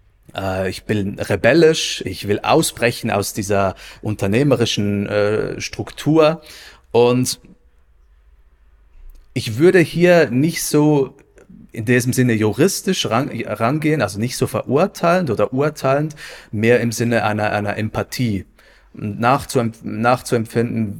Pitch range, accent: 100-130 Hz, German